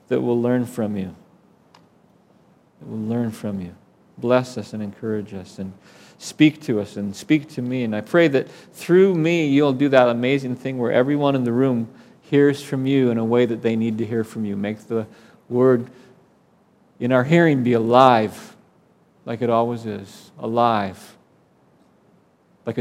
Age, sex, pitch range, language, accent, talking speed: 40-59, male, 115-150 Hz, English, American, 175 wpm